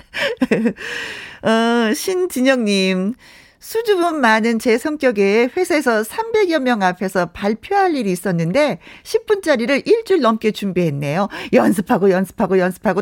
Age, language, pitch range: 40-59, Korean, 195-310 Hz